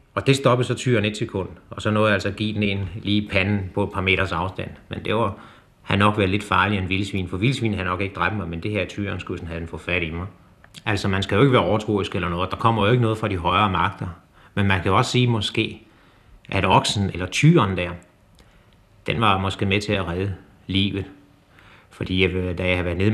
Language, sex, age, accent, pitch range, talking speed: Danish, male, 30-49, native, 95-110 Hz, 245 wpm